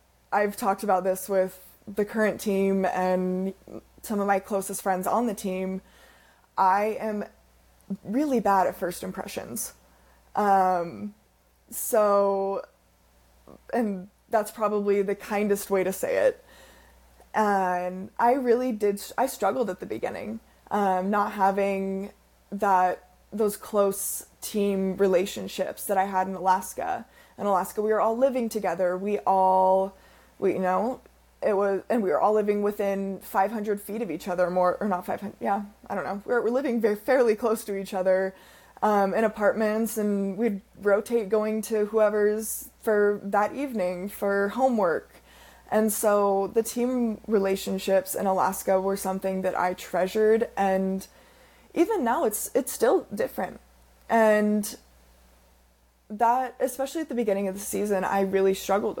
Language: English